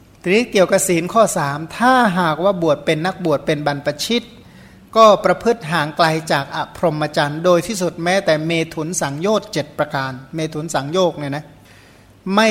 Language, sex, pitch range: Thai, male, 150-195 Hz